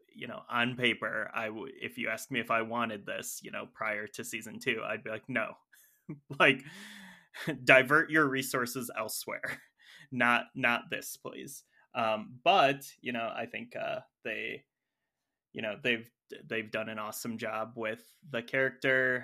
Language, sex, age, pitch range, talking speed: English, male, 20-39, 115-135 Hz, 160 wpm